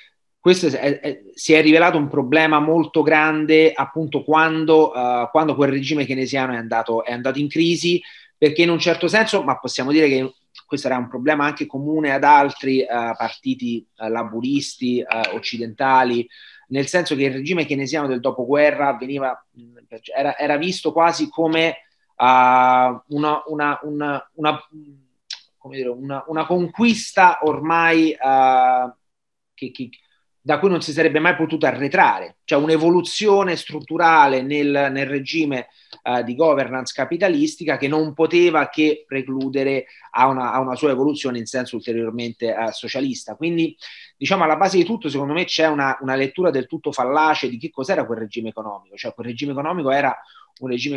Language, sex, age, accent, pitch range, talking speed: Italian, male, 30-49, native, 130-165 Hz, 160 wpm